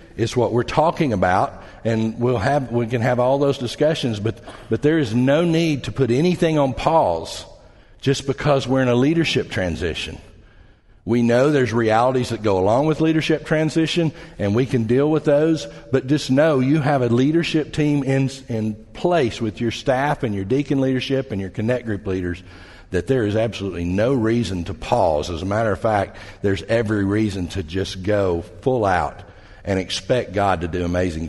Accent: American